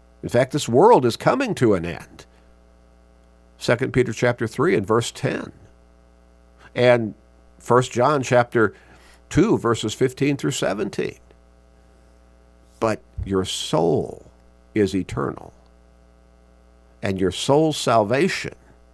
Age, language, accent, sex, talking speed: 50-69, English, American, male, 110 wpm